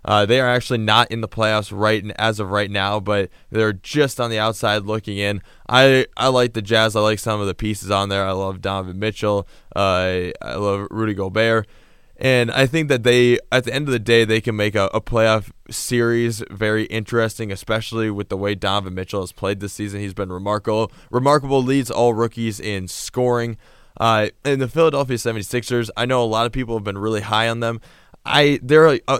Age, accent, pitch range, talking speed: 20-39, American, 105-120 Hz, 210 wpm